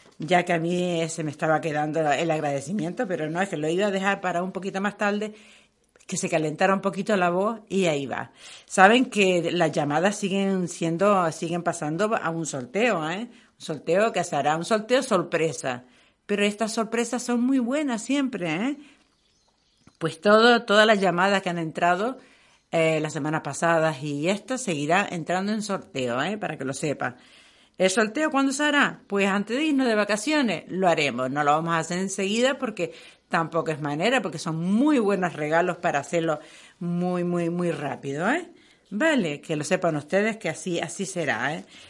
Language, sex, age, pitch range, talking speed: Spanish, female, 50-69, 160-225 Hz, 185 wpm